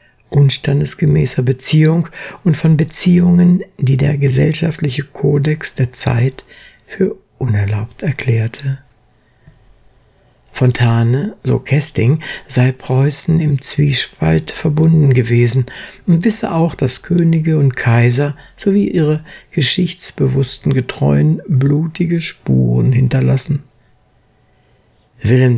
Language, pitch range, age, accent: German, 120-155 Hz, 60-79, German